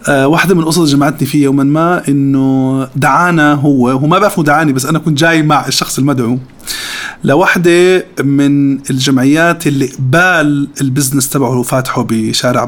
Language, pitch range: Arabic, 135-165 Hz